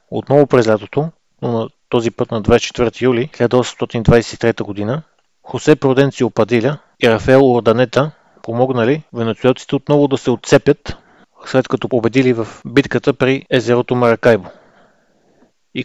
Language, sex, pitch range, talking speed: Bulgarian, male, 115-135 Hz, 125 wpm